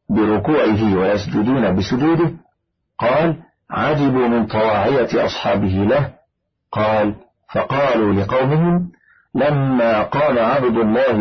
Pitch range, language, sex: 110-160 Hz, Arabic, male